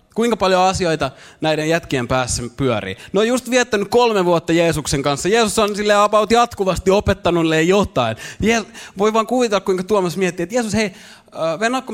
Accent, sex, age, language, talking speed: native, male, 20-39, Finnish, 160 wpm